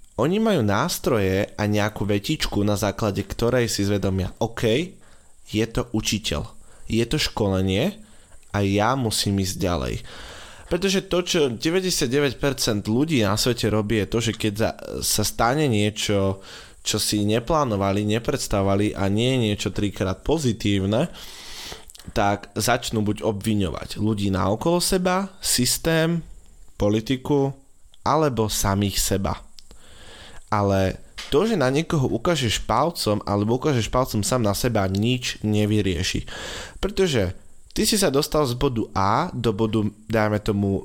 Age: 20-39